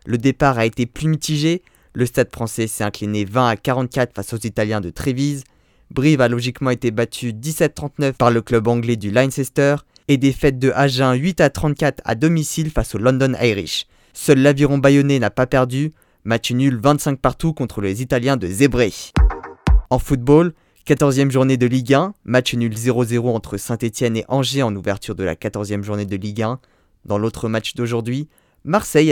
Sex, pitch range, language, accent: male, 115-145 Hz, French, French